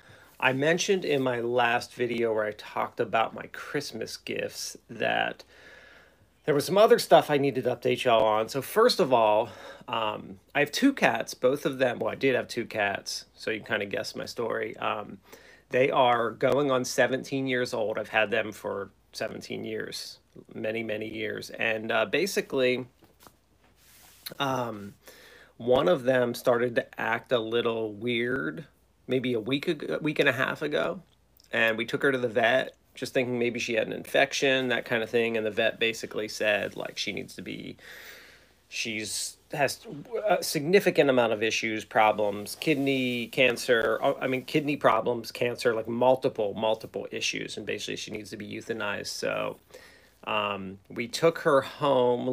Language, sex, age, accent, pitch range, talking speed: English, male, 30-49, American, 110-135 Hz, 170 wpm